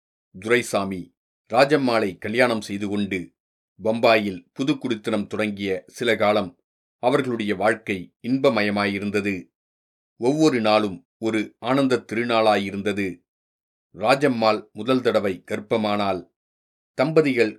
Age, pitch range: 40-59, 100-120 Hz